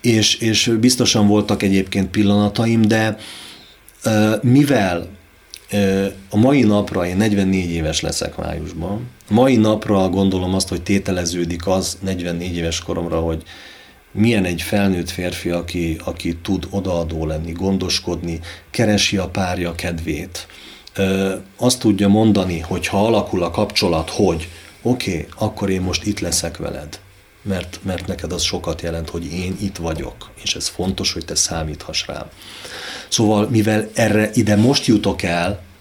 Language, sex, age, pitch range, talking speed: Hungarian, male, 40-59, 85-105 Hz, 135 wpm